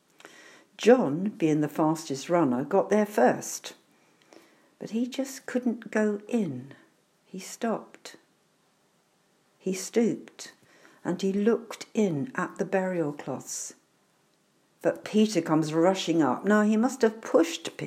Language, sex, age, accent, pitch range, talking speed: English, female, 60-79, British, 150-205 Hz, 120 wpm